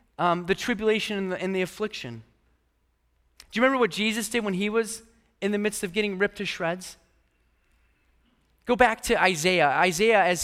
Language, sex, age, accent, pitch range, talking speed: English, male, 30-49, American, 155-220 Hz, 180 wpm